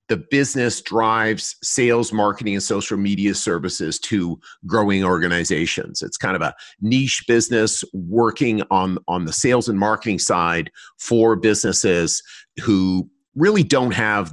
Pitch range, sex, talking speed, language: 100-135 Hz, male, 135 wpm, English